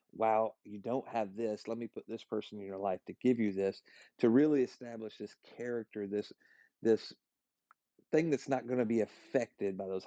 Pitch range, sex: 110-125 Hz, male